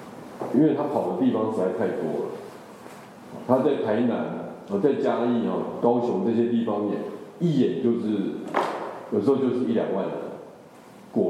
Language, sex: Chinese, male